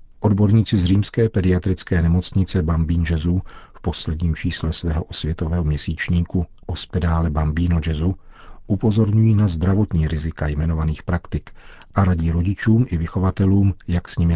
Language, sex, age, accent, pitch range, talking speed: Czech, male, 50-69, native, 85-100 Hz, 115 wpm